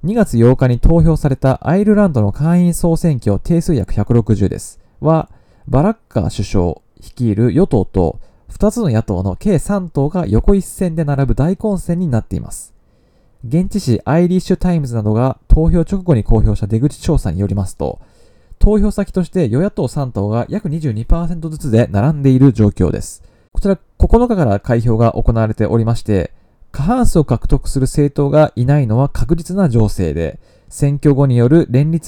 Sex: male